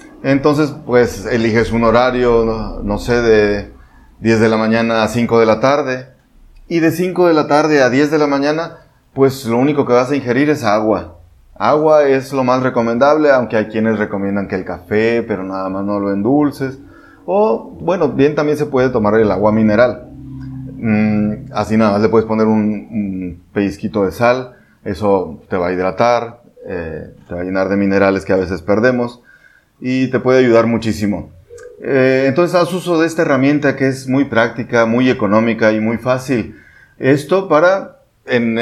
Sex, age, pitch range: male, 30-49, 110-135 Hz